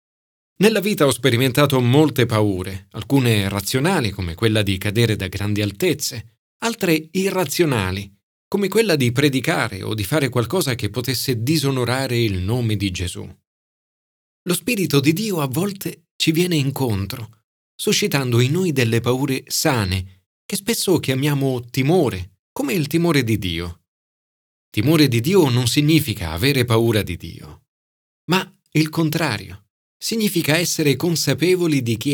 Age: 40-59